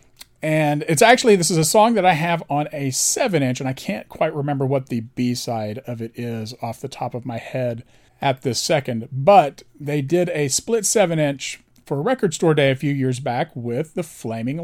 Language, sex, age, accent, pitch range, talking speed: English, male, 40-59, American, 125-160 Hz, 220 wpm